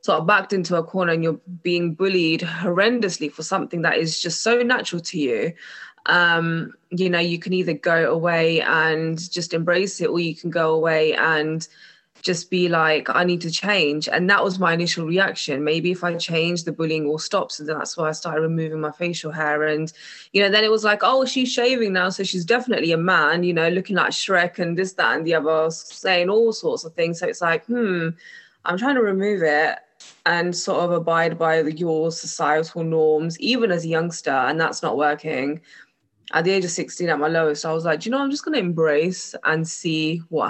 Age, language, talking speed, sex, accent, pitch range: 20-39, English, 215 wpm, female, British, 160-185 Hz